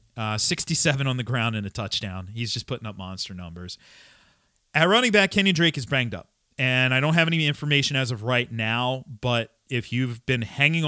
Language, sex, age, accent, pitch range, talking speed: English, male, 30-49, American, 110-155 Hz, 205 wpm